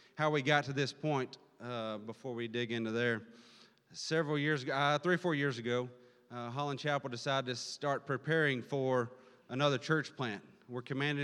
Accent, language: American, English